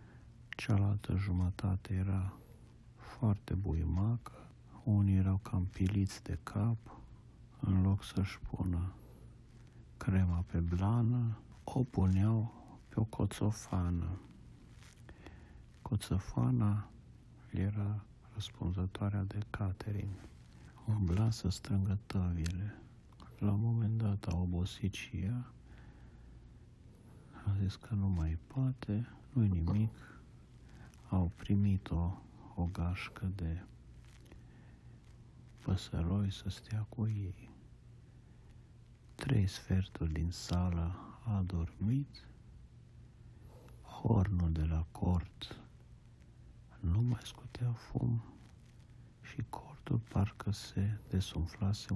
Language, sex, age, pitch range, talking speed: Romanian, male, 60-79, 95-115 Hz, 90 wpm